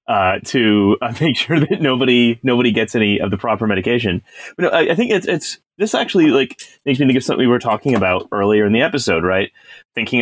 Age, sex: 30-49, male